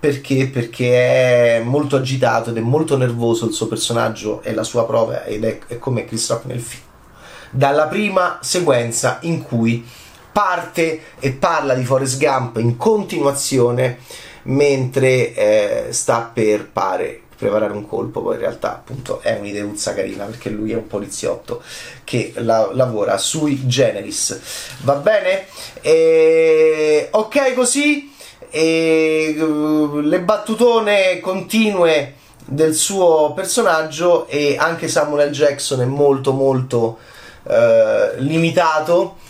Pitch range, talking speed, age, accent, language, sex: 125-180 Hz, 125 wpm, 30-49, native, Italian, male